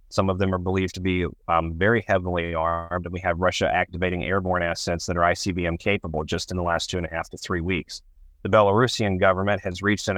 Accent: American